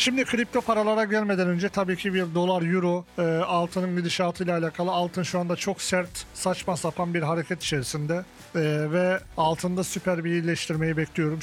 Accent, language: native, Turkish